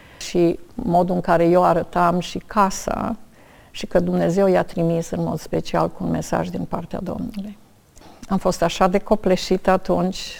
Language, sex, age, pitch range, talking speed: Romanian, female, 50-69, 175-200 Hz, 160 wpm